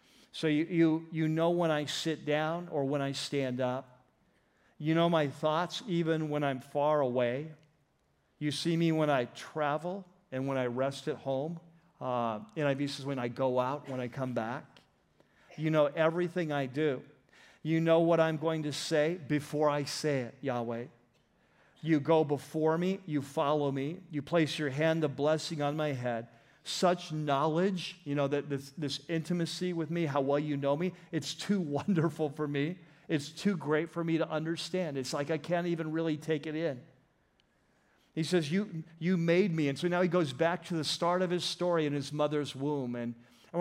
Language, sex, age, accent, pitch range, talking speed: English, male, 50-69, American, 140-165 Hz, 195 wpm